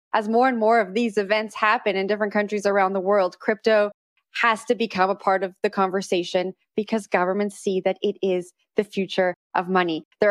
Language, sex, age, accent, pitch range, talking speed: English, female, 20-39, American, 195-230 Hz, 200 wpm